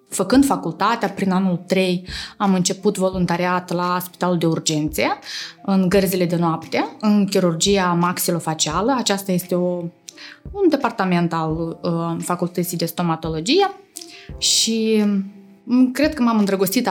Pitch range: 175-215 Hz